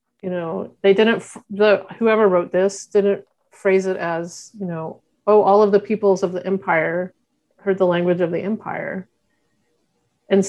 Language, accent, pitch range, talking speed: English, American, 185-210 Hz, 165 wpm